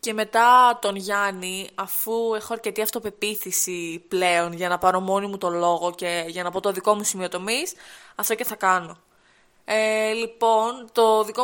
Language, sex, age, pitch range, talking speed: Greek, female, 20-39, 195-235 Hz, 170 wpm